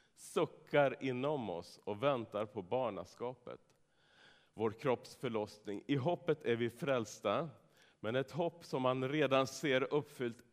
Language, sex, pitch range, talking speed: Swedish, male, 110-145 Hz, 125 wpm